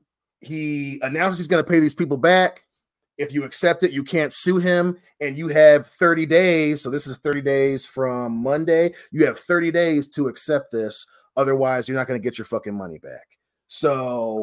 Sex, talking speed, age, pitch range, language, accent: male, 195 wpm, 30-49, 130-170 Hz, English, American